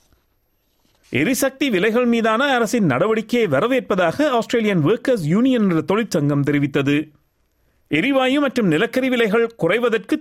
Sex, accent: male, native